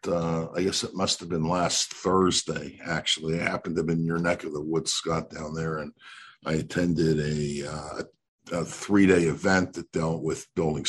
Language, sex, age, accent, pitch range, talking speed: English, male, 50-69, American, 80-95 Hz, 200 wpm